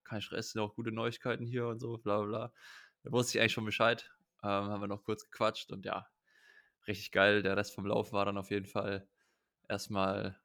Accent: German